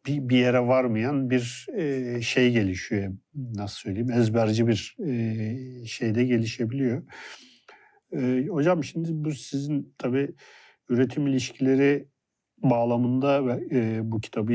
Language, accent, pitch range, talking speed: Turkish, native, 115-135 Hz, 90 wpm